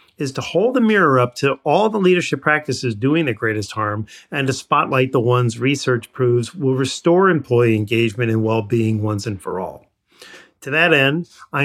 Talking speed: 185 wpm